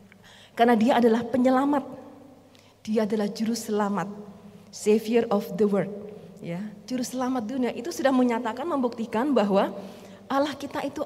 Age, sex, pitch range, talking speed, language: 30-49, female, 205-255 Hz, 130 wpm, Indonesian